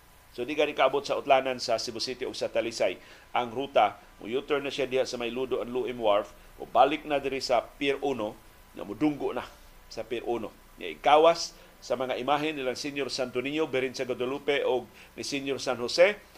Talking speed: 200 wpm